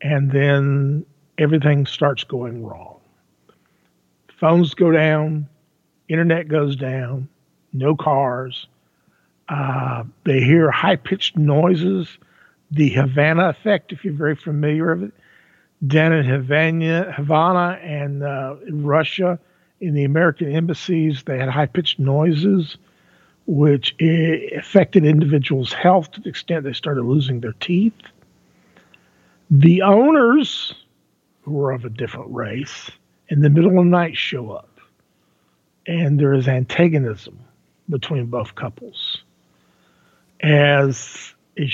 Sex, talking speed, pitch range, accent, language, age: male, 115 wpm, 135-165 Hz, American, English, 50-69